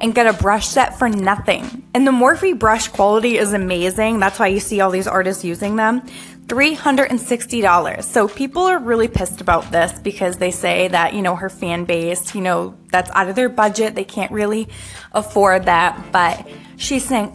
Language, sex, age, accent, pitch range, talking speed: English, female, 20-39, American, 185-255 Hz, 190 wpm